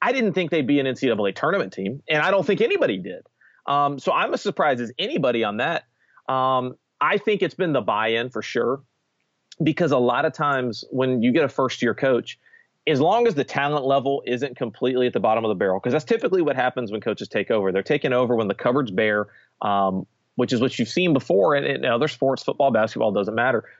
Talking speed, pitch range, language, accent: 225 wpm, 115-170 Hz, English, American